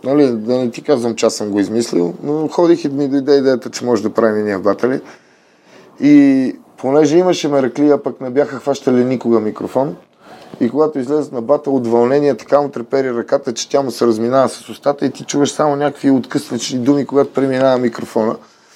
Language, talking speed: Bulgarian, 195 wpm